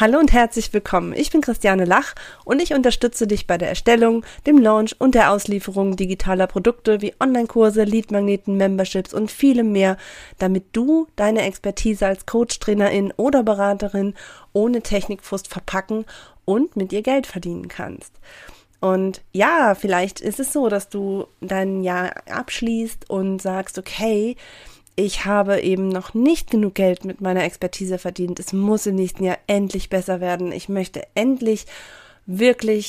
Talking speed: 150 wpm